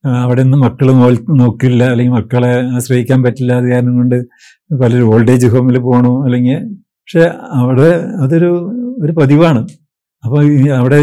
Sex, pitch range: male, 130-160 Hz